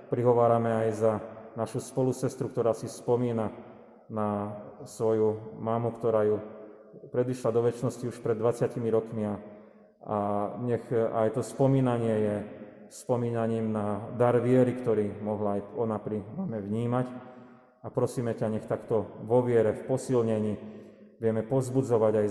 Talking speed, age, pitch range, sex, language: 130 wpm, 30-49, 105-120 Hz, male, Slovak